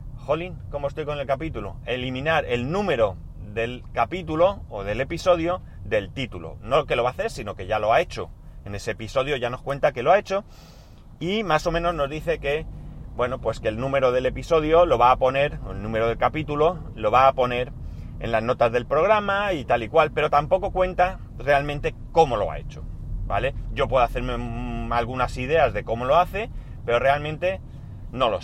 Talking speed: 205 wpm